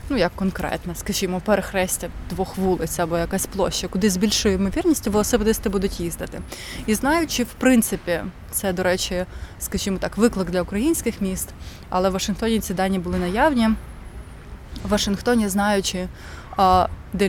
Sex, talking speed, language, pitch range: female, 140 wpm, Ukrainian, 180-215 Hz